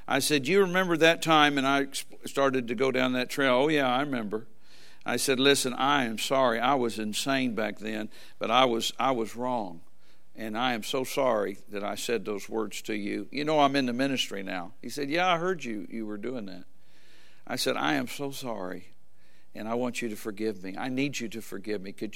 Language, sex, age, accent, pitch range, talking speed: English, male, 60-79, American, 115-155 Hz, 225 wpm